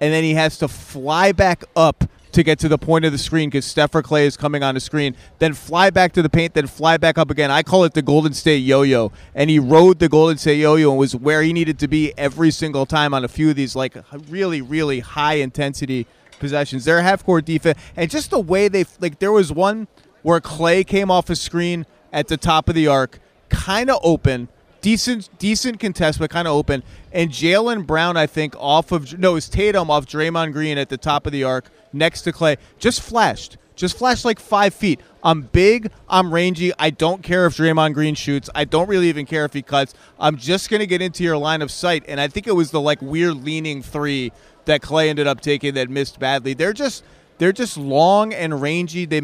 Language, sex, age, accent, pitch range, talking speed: English, male, 30-49, American, 145-175 Hz, 235 wpm